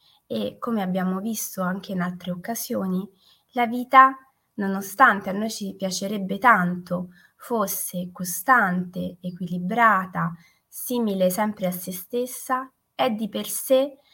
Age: 20-39